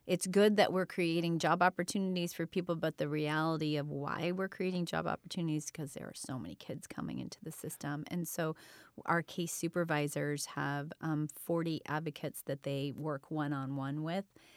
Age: 30-49